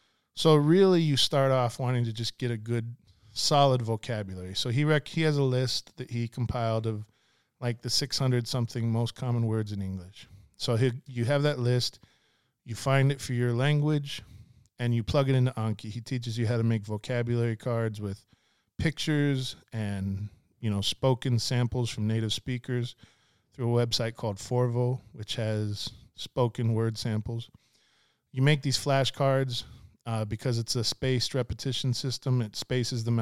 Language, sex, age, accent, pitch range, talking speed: English, male, 40-59, American, 110-130 Hz, 165 wpm